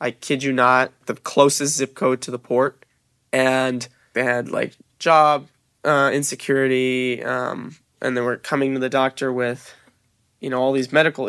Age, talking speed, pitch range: 20-39, 170 wpm, 125-140 Hz